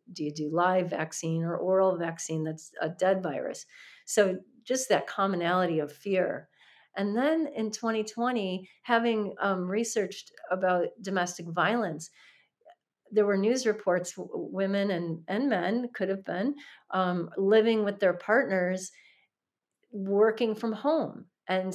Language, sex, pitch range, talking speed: English, female, 175-205 Hz, 130 wpm